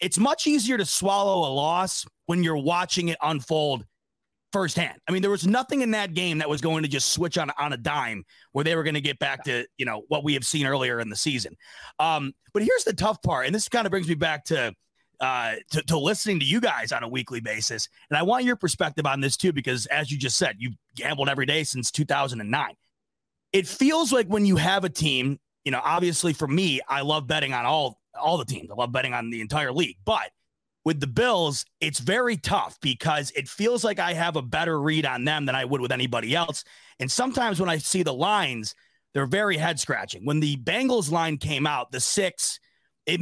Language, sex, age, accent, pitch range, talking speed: English, male, 30-49, American, 140-185 Hz, 230 wpm